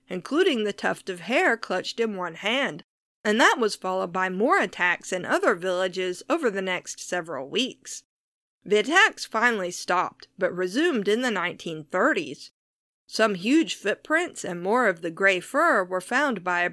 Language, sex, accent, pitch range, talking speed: English, female, American, 180-275 Hz, 165 wpm